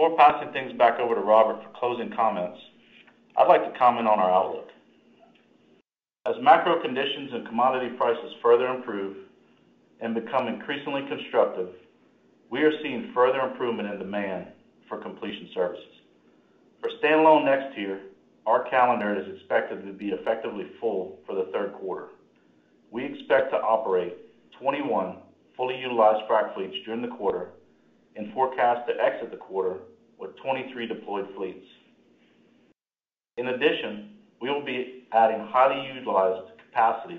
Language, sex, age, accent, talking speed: English, male, 40-59, American, 140 wpm